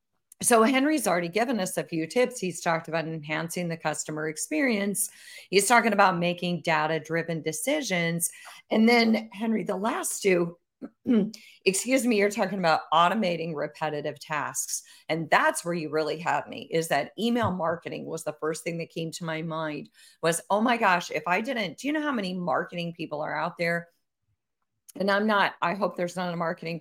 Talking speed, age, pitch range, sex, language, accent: 180 wpm, 40-59, 165-215 Hz, female, English, American